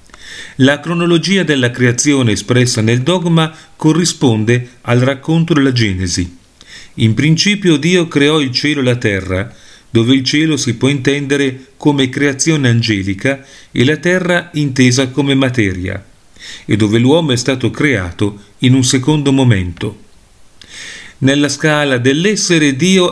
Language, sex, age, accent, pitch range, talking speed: Italian, male, 40-59, native, 115-150 Hz, 130 wpm